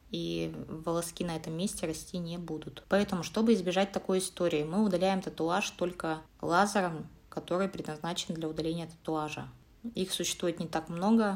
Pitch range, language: 155-185 Hz, Russian